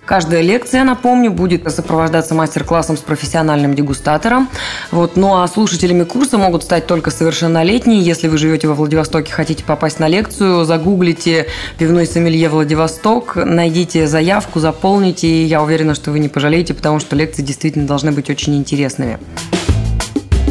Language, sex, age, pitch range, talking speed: Russian, female, 20-39, 155-185 Hz, 145 wpm